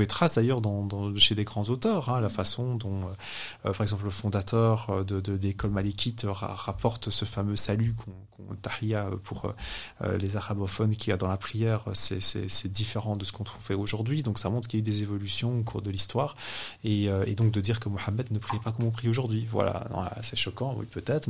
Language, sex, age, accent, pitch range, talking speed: French, male, 20-39, French, 100-115 Hz, 215 wpm